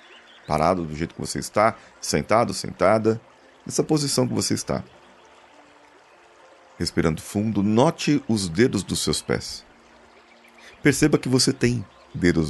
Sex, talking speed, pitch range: male, 125 wpm, 80-115 Hz